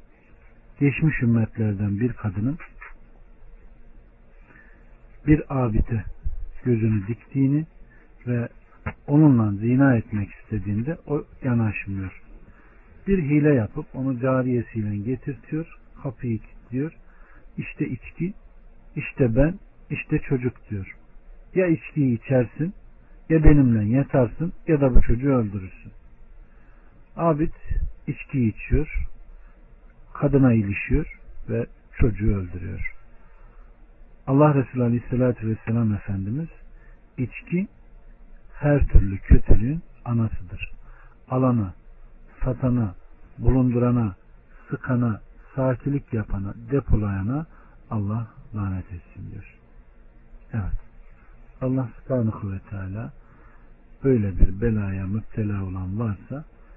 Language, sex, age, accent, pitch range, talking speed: Turkish, male, 60-79, native, 100-135 Hz, 85 wpm